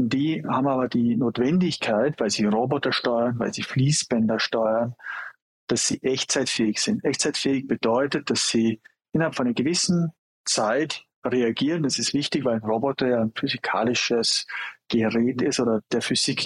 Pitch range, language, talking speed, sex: 115-155 Hz, German, 150 wpm, male